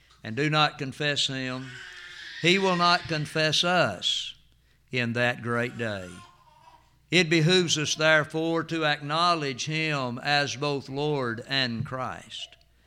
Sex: male